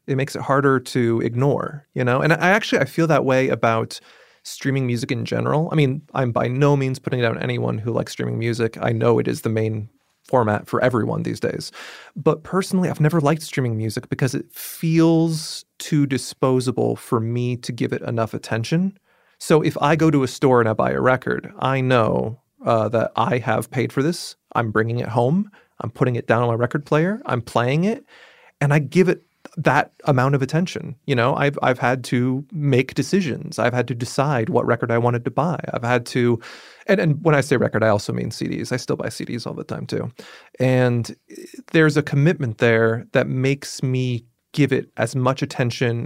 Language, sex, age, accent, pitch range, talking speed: English, male, 30-49, American, 120-155 Hz, 210 wpm